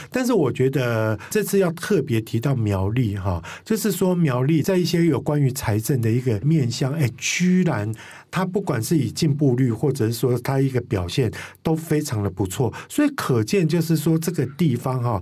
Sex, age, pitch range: male, 50-69, 110-155 Hz